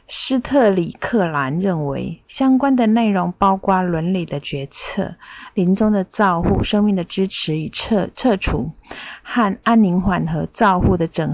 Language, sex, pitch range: Chinese, female, 175-215 Hz